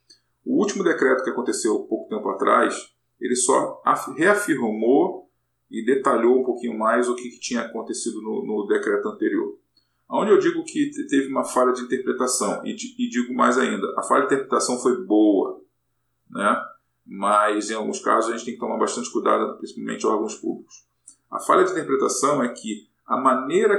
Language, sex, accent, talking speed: Portuguese, male, Brazilian, 170 wpm